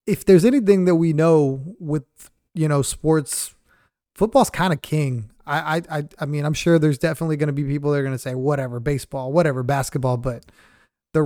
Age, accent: 20-39, American